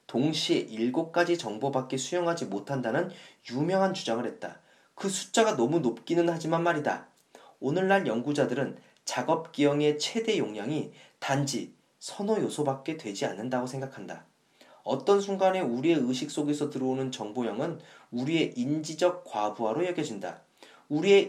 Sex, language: male, Korean